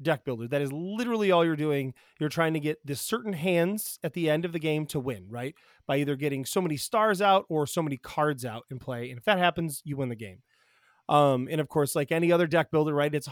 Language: English